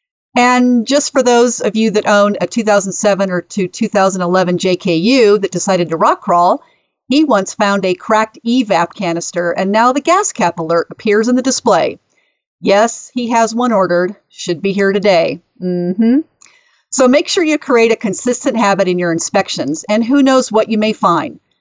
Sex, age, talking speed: female, 50-69, 180 wpm